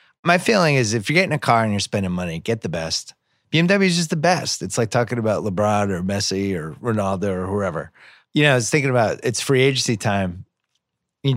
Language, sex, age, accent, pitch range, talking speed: English, male, 30-49, American, 95-125 Hz, 220 wpm